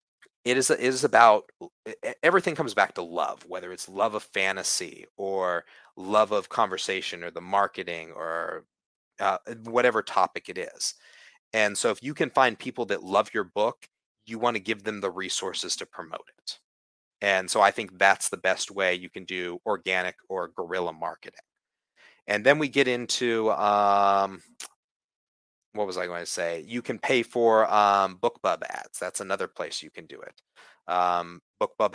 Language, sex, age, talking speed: English, male, 30-49, 175 wpm